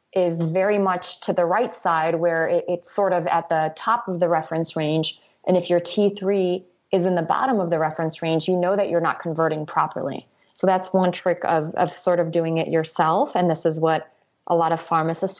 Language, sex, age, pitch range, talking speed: English, female, 30-49, 165-185 Hz, 220 wpm